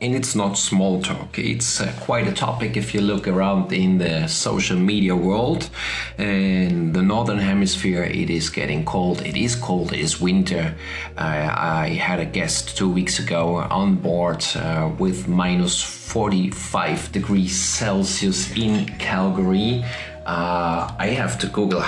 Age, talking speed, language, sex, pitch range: 40-59, 150 wpm, English, male, 85-105 Hz